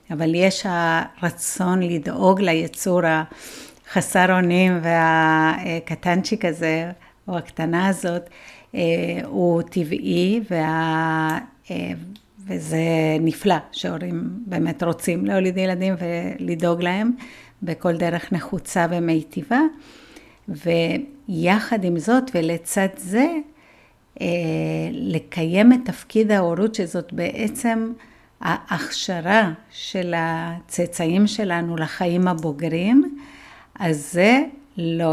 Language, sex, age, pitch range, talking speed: Hebrew, female, 50-69, 165-195 Hz, 80 wpm